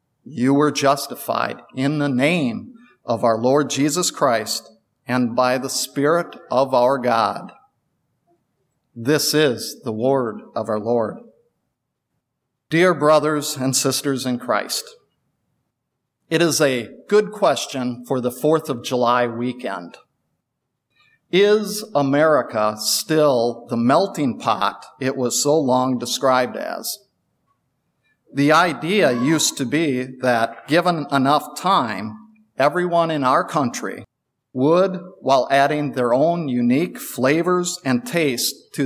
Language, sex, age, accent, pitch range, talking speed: English, male, 50-69, American, 125-160 Hz, 120 wpm